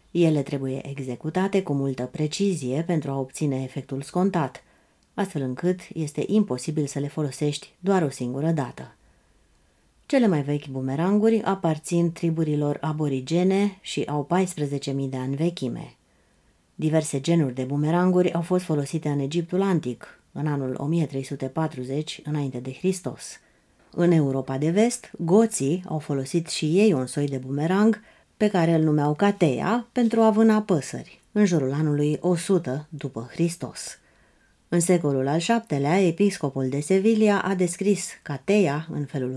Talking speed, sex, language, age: 140 wpm, female, Romanian, 30-49